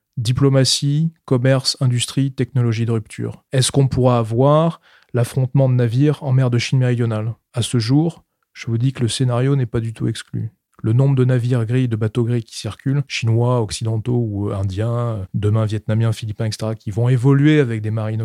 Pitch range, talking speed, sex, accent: 115-140 Hz, 185 wpm, male, French